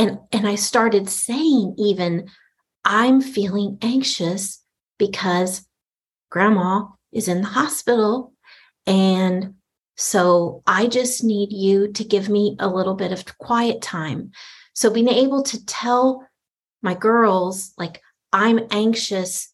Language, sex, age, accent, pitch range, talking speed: English, female, 40-59, American, 185-225 Hz, 125 wpm